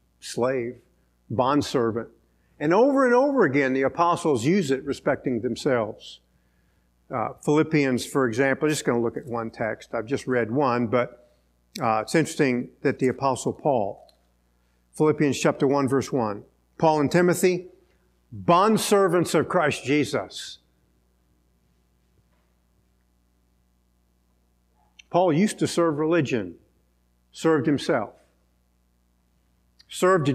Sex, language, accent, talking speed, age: male, English, American, 115 wpm, 50-69